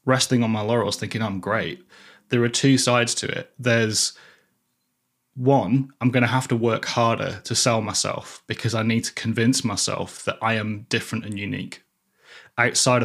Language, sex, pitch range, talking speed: English, male, 110-130 Hz, 175 wpm